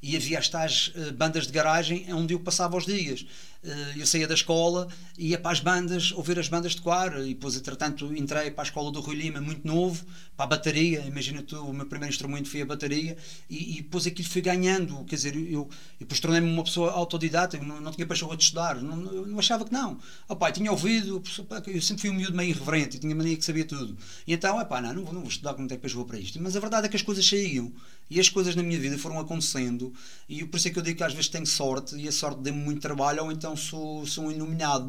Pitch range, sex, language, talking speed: 135-170 Hz, male, Portuguese, 255 wpm